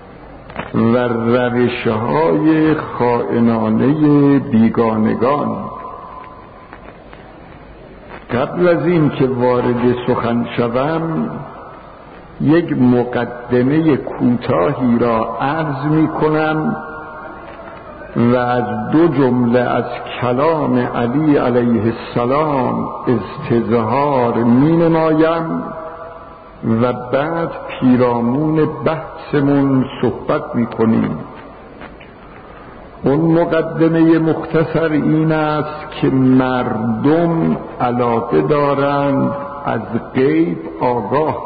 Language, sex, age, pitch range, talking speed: Persian, male, 60-79, 120-155 Hz, 70 wpm